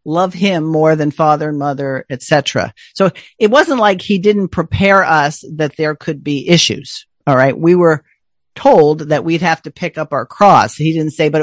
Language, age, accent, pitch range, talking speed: English, 50-69, American, 140-175 Hz, 205 wpm